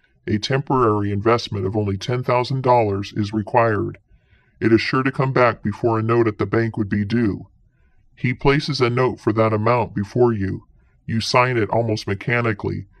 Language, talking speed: English, 170 wpm